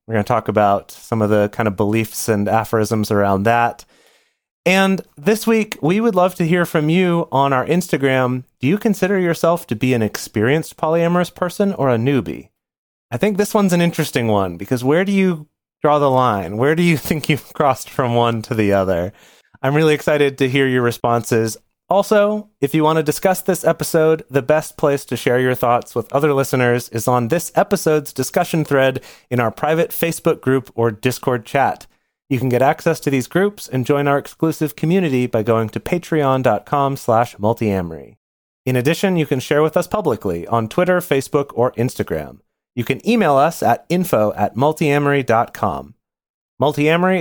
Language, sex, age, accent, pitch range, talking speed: English, male, 30-49, American, 120-165 Hz, 185 wpm